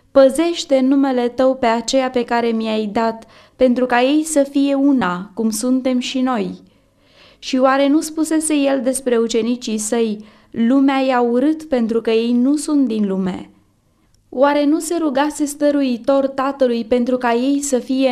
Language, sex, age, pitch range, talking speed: Romanian, female, 20-39, 230-275 Hz, 160 wpm